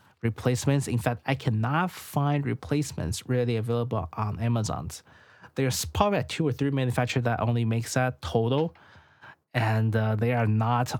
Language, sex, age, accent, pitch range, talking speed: English, male, 20-39, Chinese, 110-135 Hz, 155 wpm